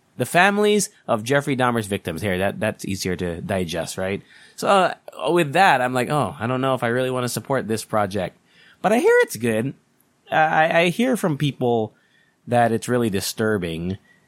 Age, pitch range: 30-49, 100-140 Hz